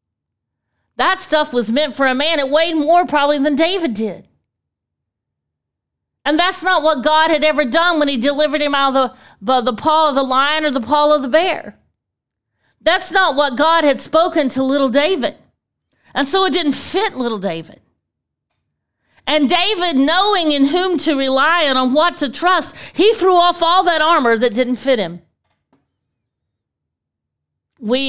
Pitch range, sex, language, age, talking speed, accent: 220-305 Hz, female, English, 40-59, 170 wpm, American